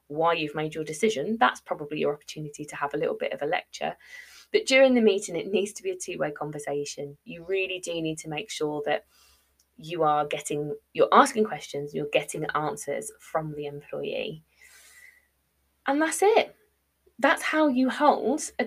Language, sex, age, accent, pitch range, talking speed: English, female, 20-39, British, 155-240 Hz, 180 wpm